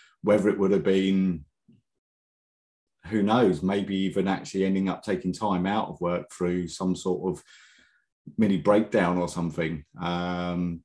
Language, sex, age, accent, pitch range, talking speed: English, male, 30-49, British, 90-100 Hz, 145 wpm